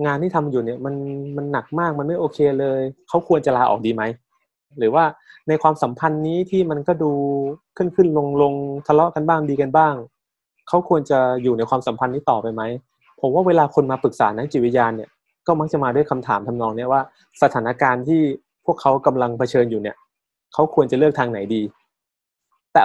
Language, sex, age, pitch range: Thai, male, 20-39, 120-150 Hz